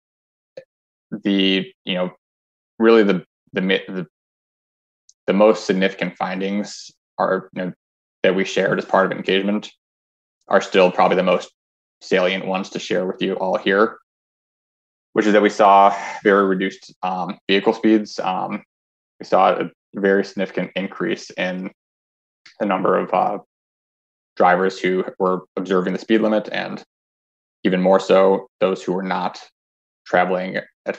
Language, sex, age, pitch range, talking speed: English, male, 20-39, 90-100 Hz, 140 wpm